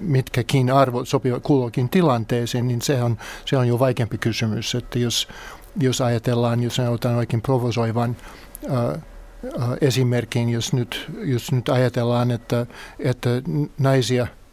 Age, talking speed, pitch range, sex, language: 60-79, 130 wpm, 120-135 Hz, male, Finnish